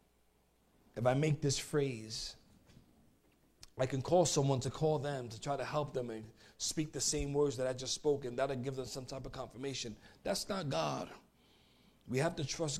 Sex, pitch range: male, 145-235 Hz